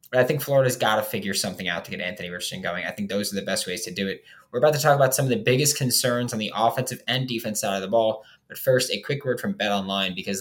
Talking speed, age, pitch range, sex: 300 wpm, 10-29, 100-135 Hz, male